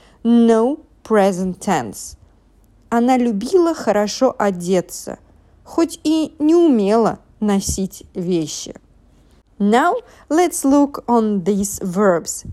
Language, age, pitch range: English, 40-59, 180-275 Hz